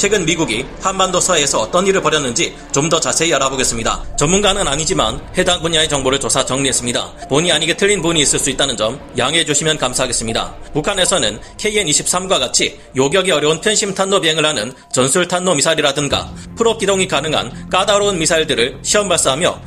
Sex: male